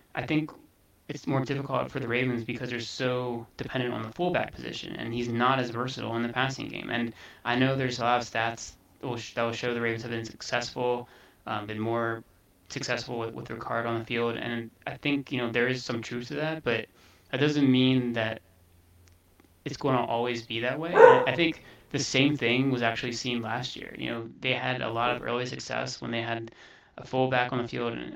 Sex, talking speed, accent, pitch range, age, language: male, 225 wpm, American, 115-130 Hz, 20-39, English